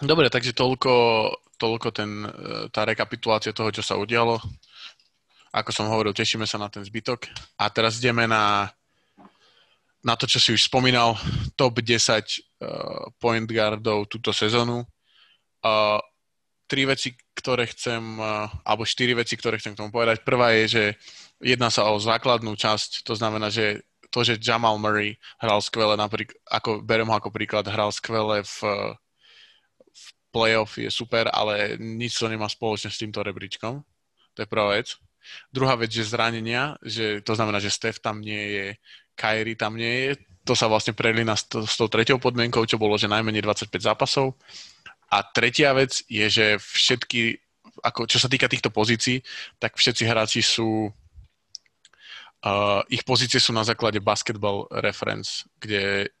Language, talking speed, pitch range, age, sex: Slovak, 155 wpm, 105-120 Hz, 20-39, male